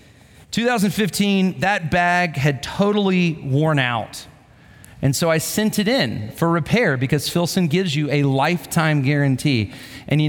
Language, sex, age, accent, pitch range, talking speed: English, male, 40-59, American, 150-210 Hz, 140 wpm